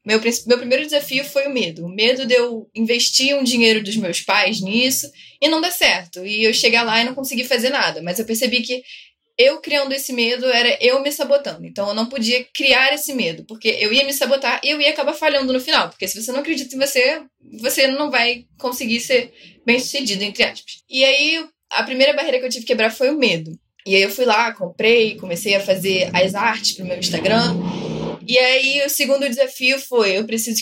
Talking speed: 215 wpm